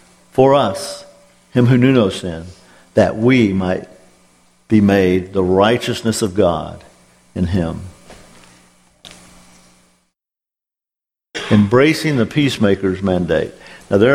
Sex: male